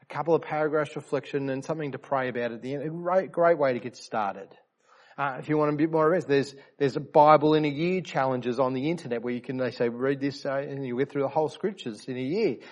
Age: 30-49